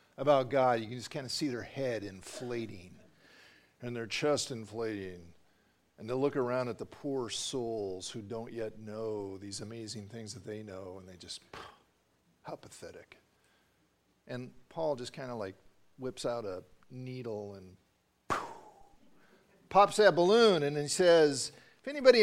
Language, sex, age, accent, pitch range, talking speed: English, male, 50-69, American, 110-170 Hz, 155 wpm